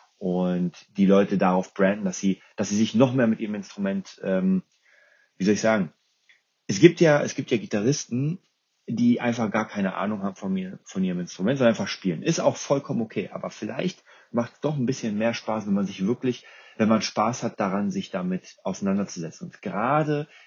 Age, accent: 30-49, German